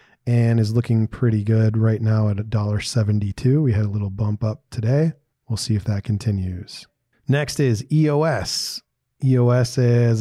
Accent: American